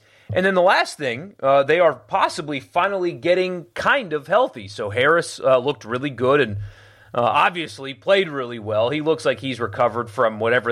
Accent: American